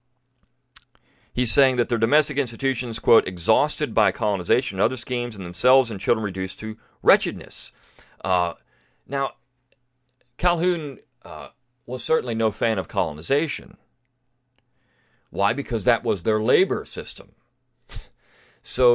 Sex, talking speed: male, 120 wpm